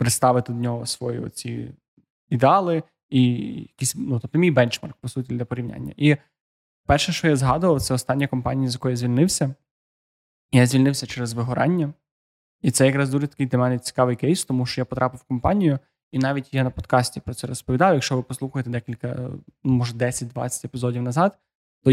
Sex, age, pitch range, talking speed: male, 20-39, 125-145 Hz, 175 wpm